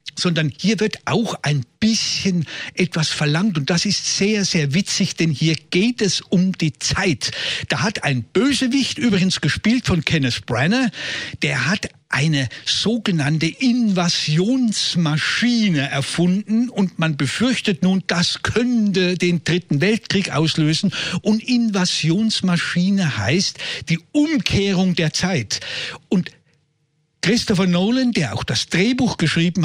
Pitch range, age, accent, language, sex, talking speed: 155-210 Hz, 60-79, German, German, male, 125 wpm